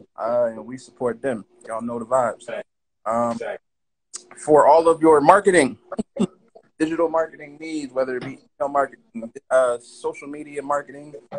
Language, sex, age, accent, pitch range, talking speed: English, male, 30-49, American, 125-195 Hz, 140 wpm